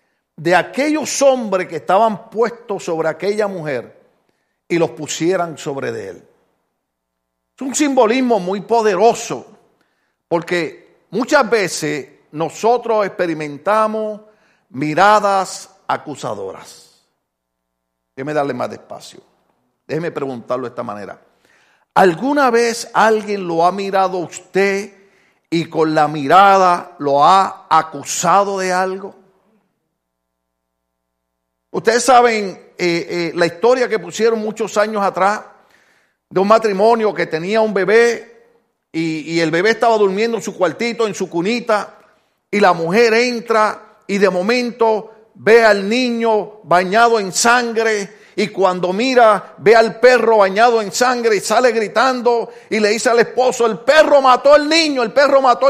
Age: 50-69